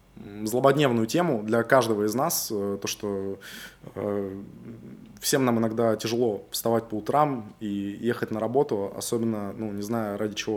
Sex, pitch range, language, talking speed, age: male, 105-120 Hz, Russian, 150 wpm, 20-39